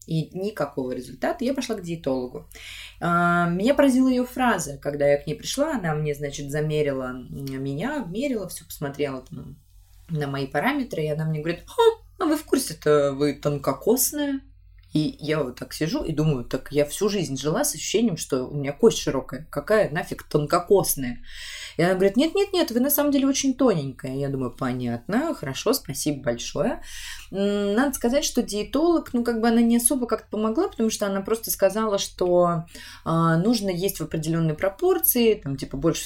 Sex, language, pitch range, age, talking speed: female, Russian, 145-220 Hz, 20-39, 170 wpm